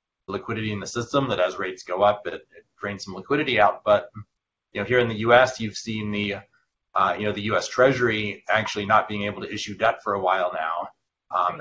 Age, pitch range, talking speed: 30-49, 100-115 Hz, 220 wpm